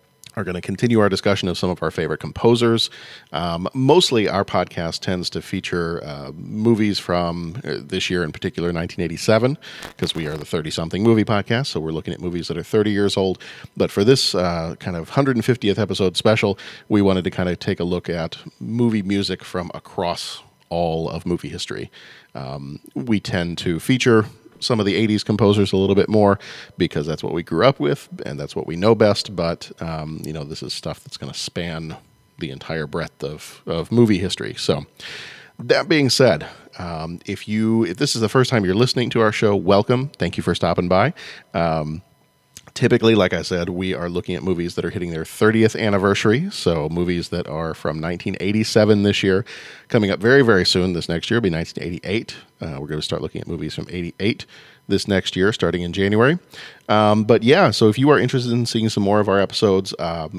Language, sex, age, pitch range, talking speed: English, male, 40-59, 85-110 Hz, 205 wpm